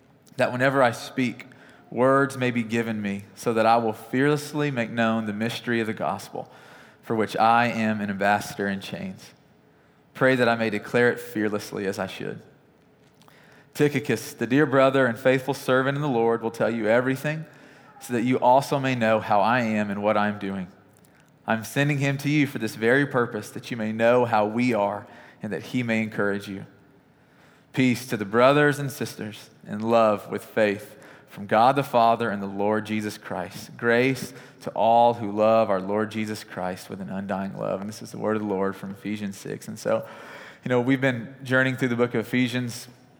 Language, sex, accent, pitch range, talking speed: English, male, American, 105-130 Hz, 200 wpm